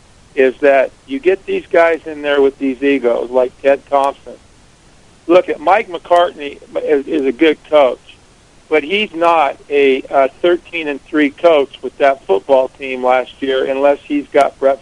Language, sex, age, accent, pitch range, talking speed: English, male, 50-69, American, 135-170 Hz, 165 wpm